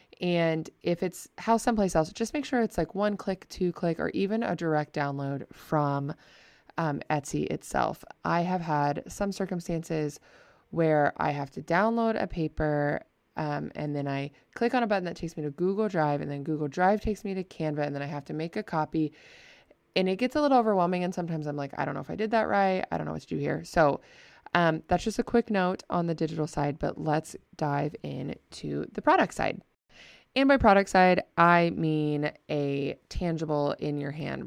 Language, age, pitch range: English, 20-39, 150-195 Hz